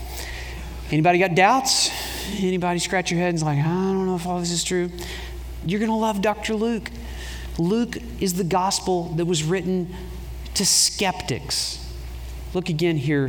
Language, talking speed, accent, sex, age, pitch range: English, 165 wpm, American, male, 40-59, 145-190 Hz